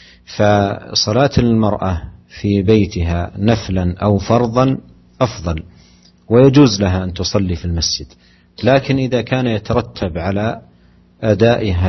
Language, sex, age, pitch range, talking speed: English, male, 50-69, 90-105 Hz, 100 wpm